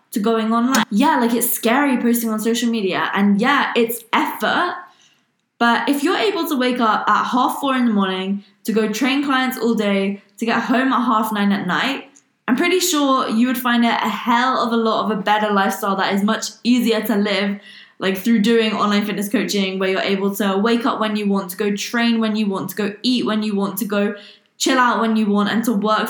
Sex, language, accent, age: female, English, British, 10-29